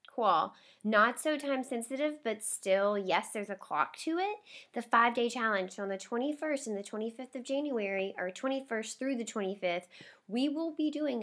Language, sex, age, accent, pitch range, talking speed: English, female, 10-29, American, 185-245 Hz, 185 wpm